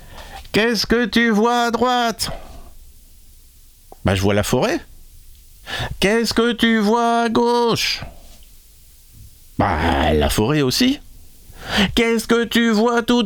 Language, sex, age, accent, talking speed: French, male, 50-69, French, 120 wpm